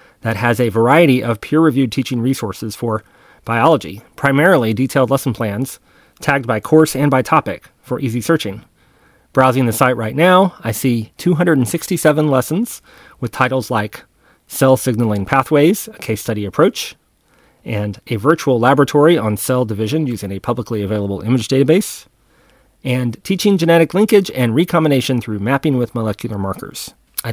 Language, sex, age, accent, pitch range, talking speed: English, male, 30-49, American, 115-150 Hz, 145 wpm